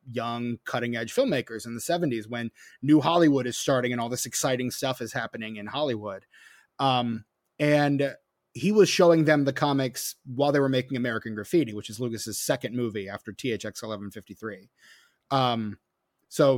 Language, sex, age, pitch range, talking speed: English, male, 30-49, 120-145 Hz, 165 wpm